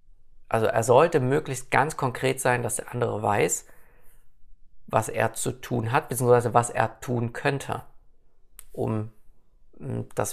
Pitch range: 110-135 Hz